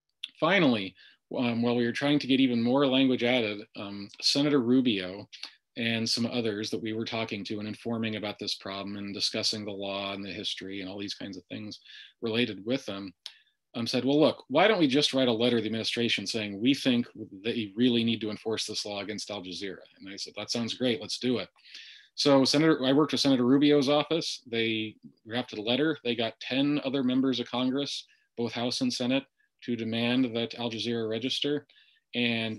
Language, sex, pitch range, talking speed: English, male, 105-130 Hz, 205 wpm